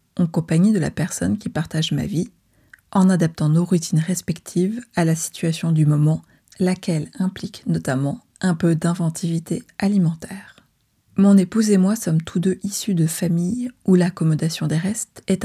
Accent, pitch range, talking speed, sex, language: French, 165-200 Hz, 160 wpm, female, French